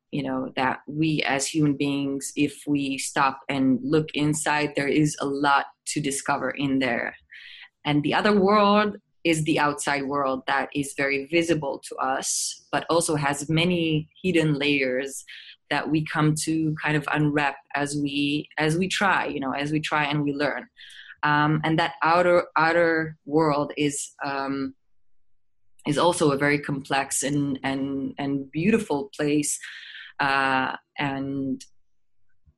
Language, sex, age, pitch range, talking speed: English, female, 20-39, 140-155 Hz, 150 wpm